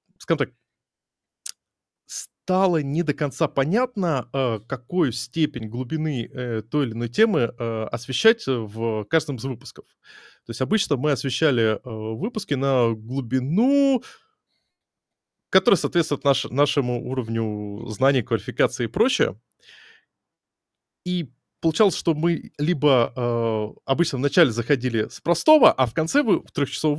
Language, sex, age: Russian, male, 20-39